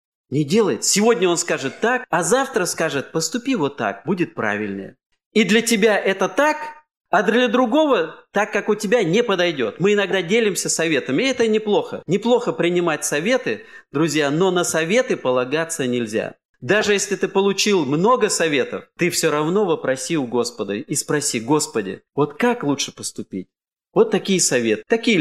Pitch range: 140-220 Hz